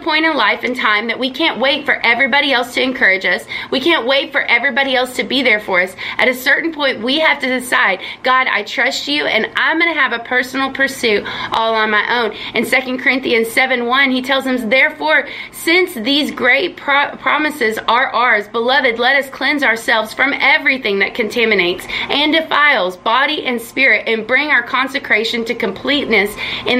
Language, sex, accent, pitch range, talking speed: English, female, American, 235-290 Hz, 195 wpm